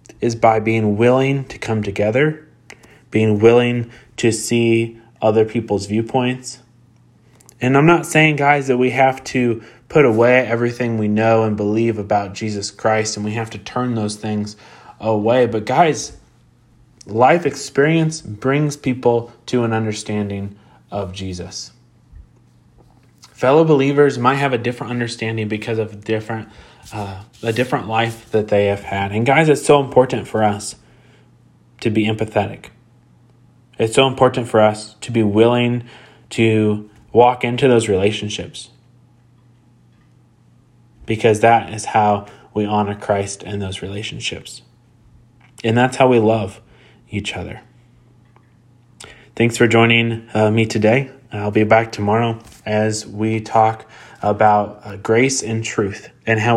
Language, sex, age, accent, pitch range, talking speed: English, male, 30-49, American, 105-120 Hz, 140 wpm